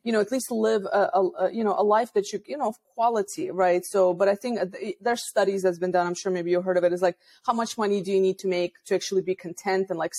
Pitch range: 180-220 Hz